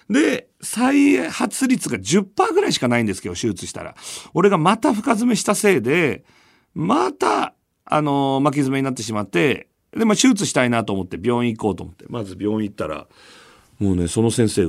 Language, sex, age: Japanese, male, 40-59